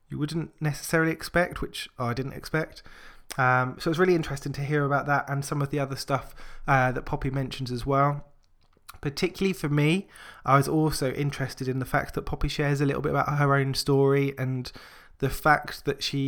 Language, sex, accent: English, male, British